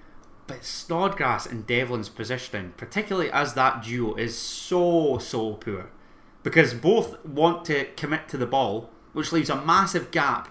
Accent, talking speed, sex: British, 150 wpm, male